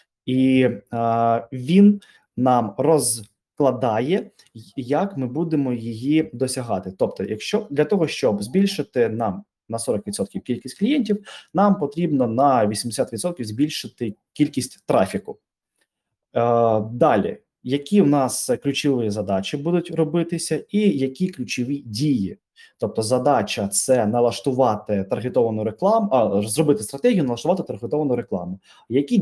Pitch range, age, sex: 115-155 Hz, 20-39, male